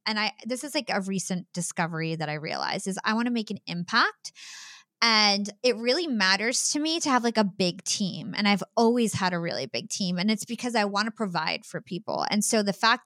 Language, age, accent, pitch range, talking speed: English, 20-39, American, 180-230 Hz, 235 wpm